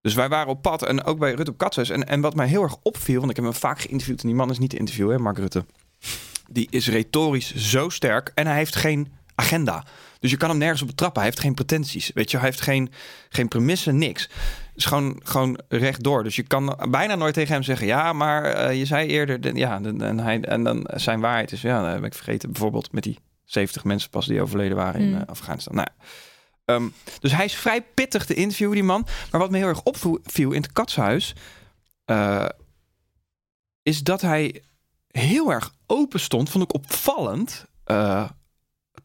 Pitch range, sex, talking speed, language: 110-155 Hz, male, 215 wpm, Dutch